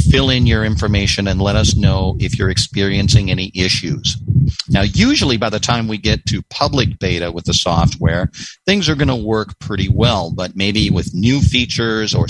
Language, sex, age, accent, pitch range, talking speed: English, male, 50-69, American, 95-115 Hz, 190 wpm